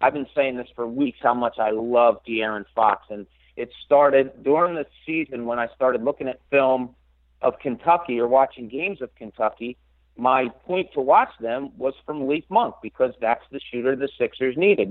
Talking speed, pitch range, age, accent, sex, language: 190 wpm, 115-140 Hz, 50-69, American, male, English